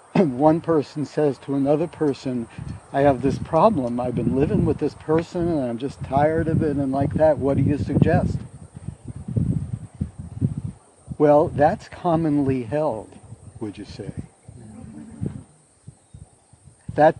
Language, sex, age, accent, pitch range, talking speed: English, male, 60-79, American, 125-150 Hz, 130 wpm